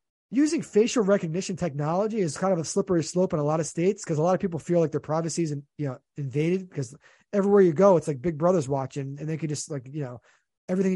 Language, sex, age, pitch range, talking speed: English, male, 20-39, 155-210 Hz, 235 wpm